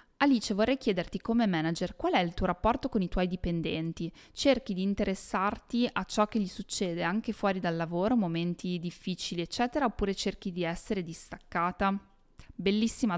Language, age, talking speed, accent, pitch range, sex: Italian, 20-39, 160 wpm, native, 170-215 Hz, female